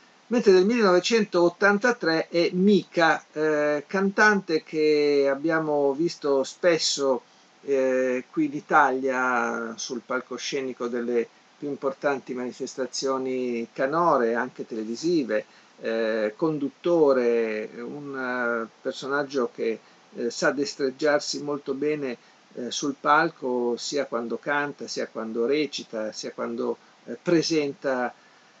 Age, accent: 50-69, native